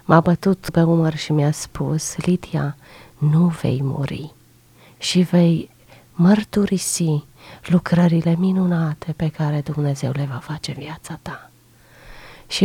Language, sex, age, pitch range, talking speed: Romanian, female, 30-49, 155-190 Hz, 120 wpm